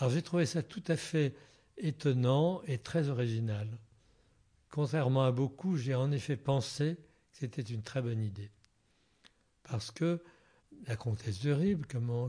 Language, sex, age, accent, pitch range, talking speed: French, male, 60-79, French, 115-145 Hz, 155 wpm